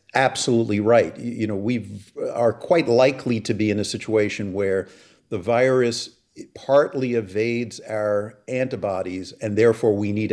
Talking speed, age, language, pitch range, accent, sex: 140 wpm, 50-69, English, 105-120 Hz, American, male